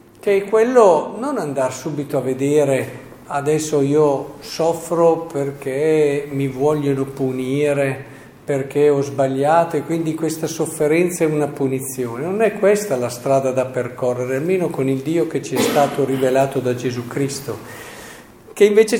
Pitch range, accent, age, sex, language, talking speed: 130-165 Hz, native, 50-69, male, Italian, 140 wpm